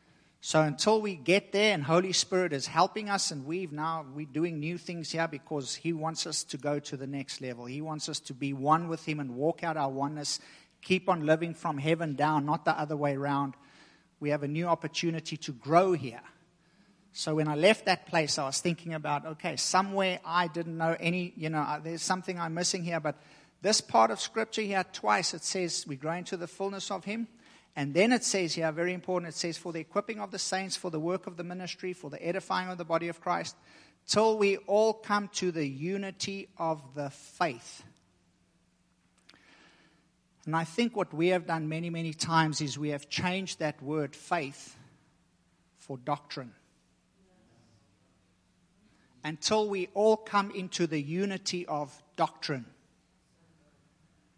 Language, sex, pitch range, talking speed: English, male, 150-185 Hz, 185 wpm